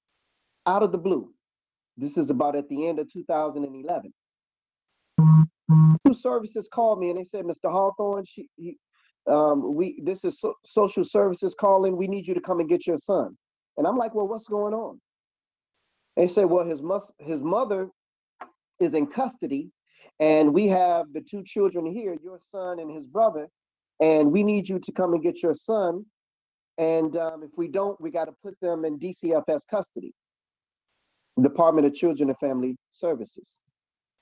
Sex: male